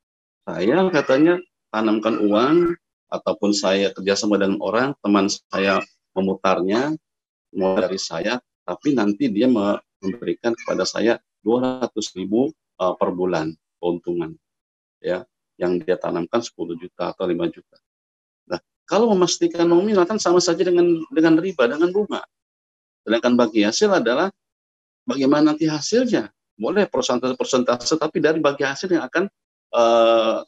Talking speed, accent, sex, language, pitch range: 125 wpm, native, male, Indonesian, 105-170 Hz